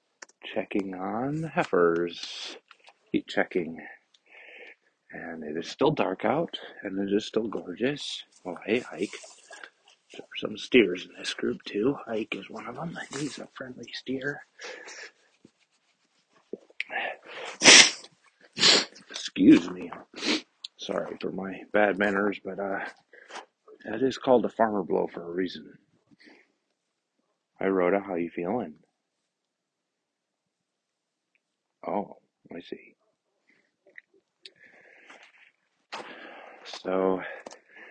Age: 40-59